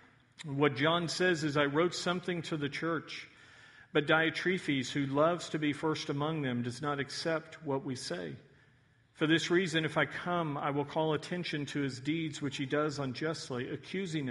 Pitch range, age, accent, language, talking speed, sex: 135-160 Hz, 50-69, American, English, 180 wpm, male